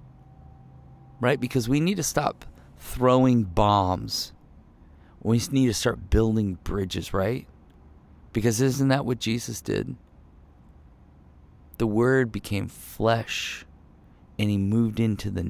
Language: English